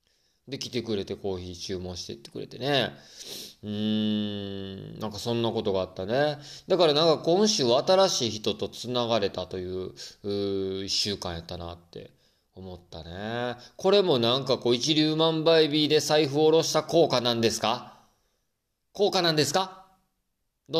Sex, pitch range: male, 100-165 Hz